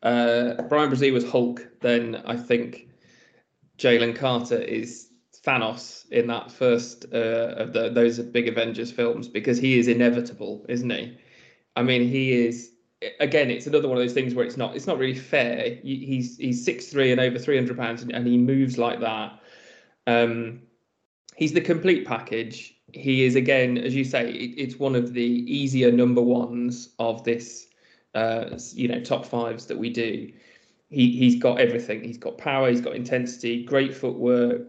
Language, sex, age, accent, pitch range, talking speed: English, male, 20-39, British, 120-125 Hz, 170 wpm